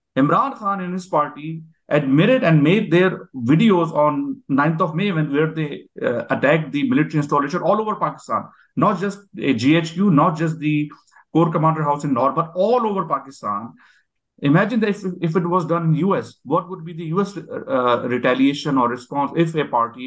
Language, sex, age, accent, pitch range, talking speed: English, male, 50-69, Indian, 140-180 Hz, 190 wpm